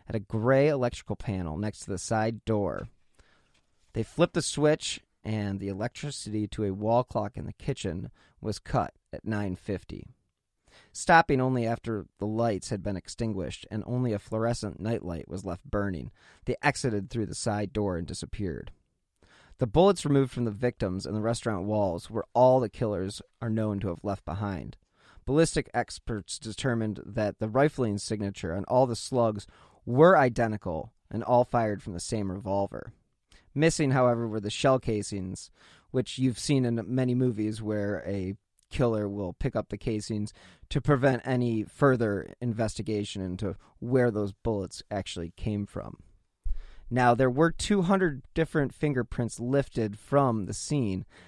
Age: 30-49